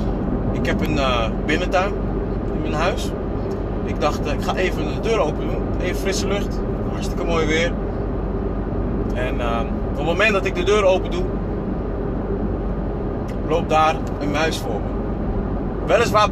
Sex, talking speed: male, 155 wpm